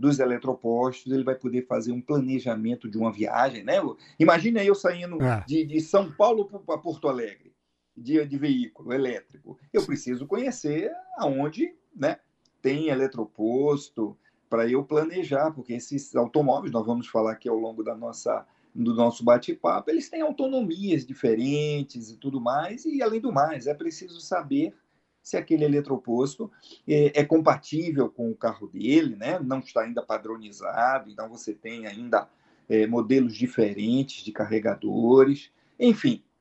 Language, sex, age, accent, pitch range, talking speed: Portuguese, male, 40-59, Brazilian, 120-185 Hz, 150 wpm